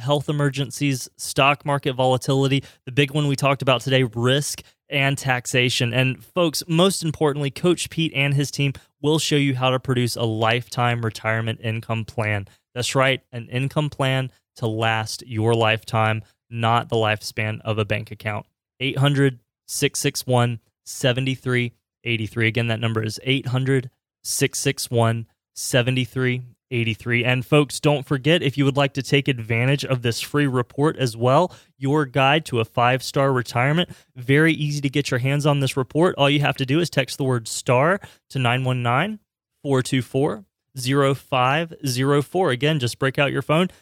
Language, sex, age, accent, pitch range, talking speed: English, male, 20-39, American, 120-145 Hz, 150 wpm